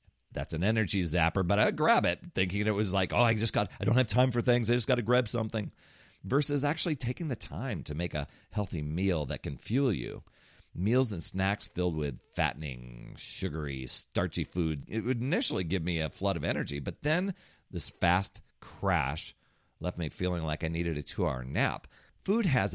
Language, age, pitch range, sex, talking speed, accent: English, 40-59, 80-120 Hz, male, 205 wpm, American